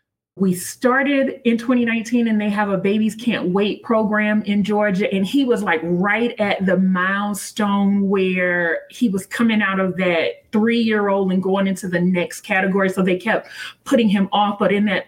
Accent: American